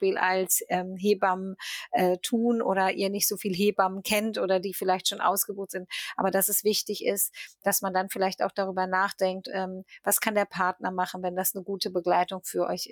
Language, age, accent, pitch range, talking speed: German, 30-49, German, 185-205 Hz, 200 wpm